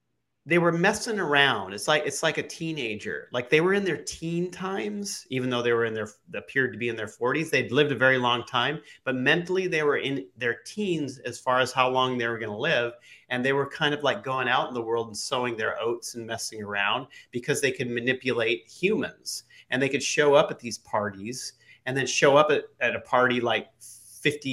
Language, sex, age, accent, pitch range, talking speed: English, male, 30-49, American, 115-145 Hz, 225 wpm